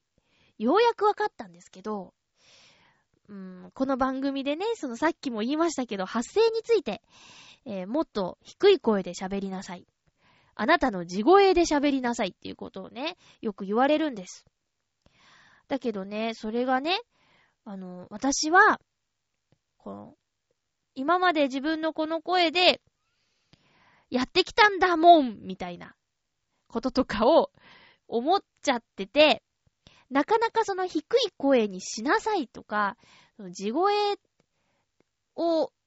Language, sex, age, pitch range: Japanese, female, 20-39, 225-370 Hz